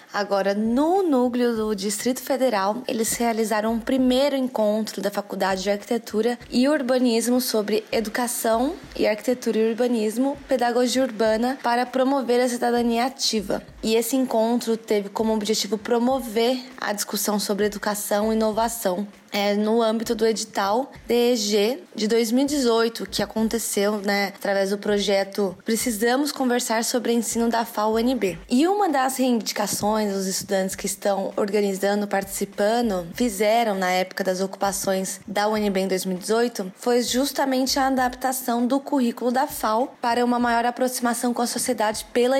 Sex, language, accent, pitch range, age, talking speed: female, Portuguese, Brazilian, 205-245 Hz, 20-39, 140 wpm